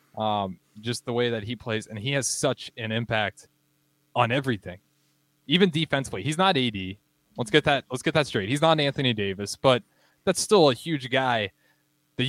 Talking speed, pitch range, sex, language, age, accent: 185 wpm, 115-150 Hz, male, English, 20-39, American